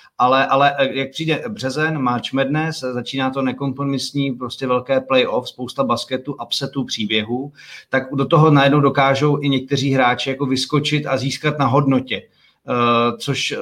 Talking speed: 140 wpm